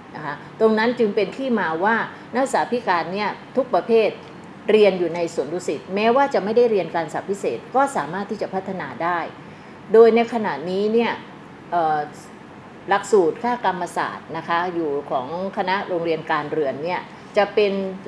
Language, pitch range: Thai, 170-225 Hz